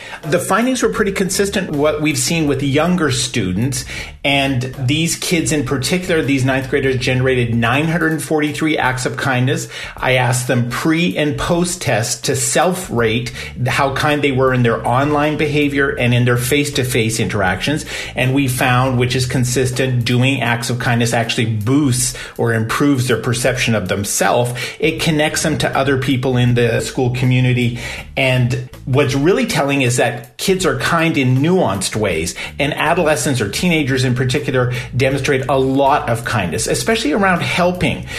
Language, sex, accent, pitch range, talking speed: English, male, American, 120-150 Hz, 155 wpm